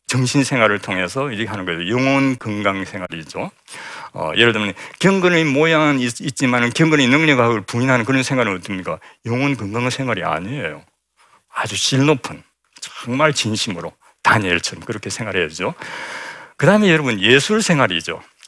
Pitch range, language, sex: 105-140 Hz, Korean, male